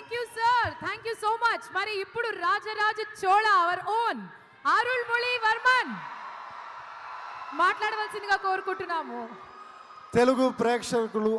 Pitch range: 205-255 Hz